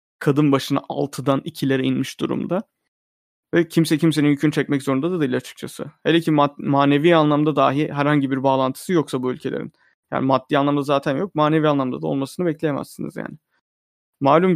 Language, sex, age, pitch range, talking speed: Turkish, male, 30-49, 135-155 Hz, 160 wpm